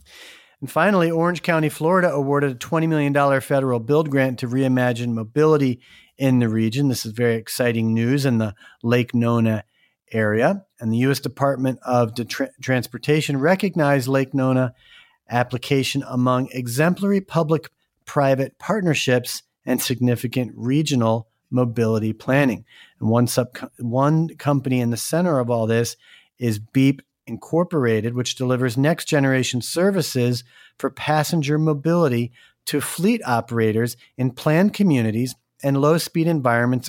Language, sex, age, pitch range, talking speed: English, male, 40-59, 120-150 Hz, 130 wpm